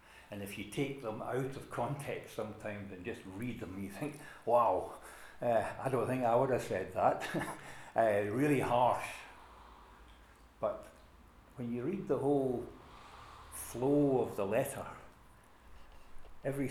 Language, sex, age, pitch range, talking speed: English, male, 60-79, 110-145 Hz, 140 wpm